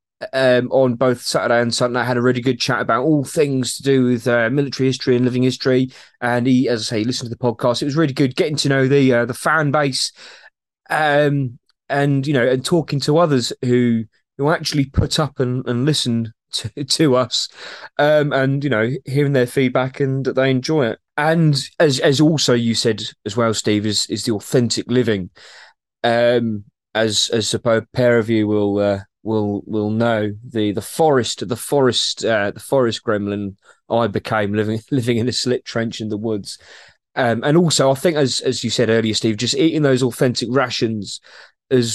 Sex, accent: male, British